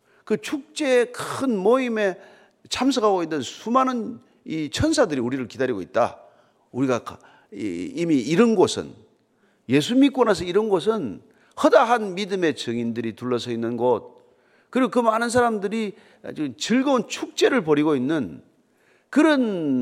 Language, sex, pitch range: Korean, male, 150-250 Hz